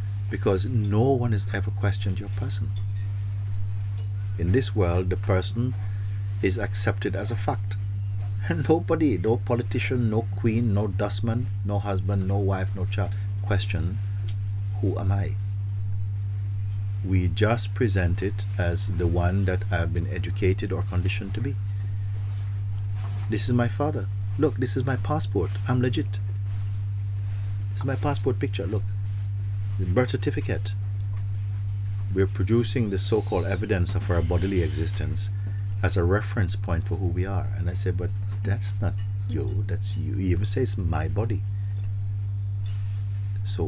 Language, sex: English, male